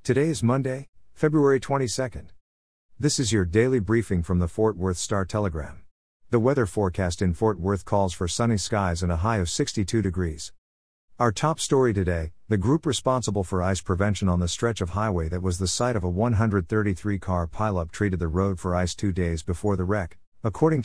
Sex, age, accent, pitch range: male, 50-69, American, 90-115 Hz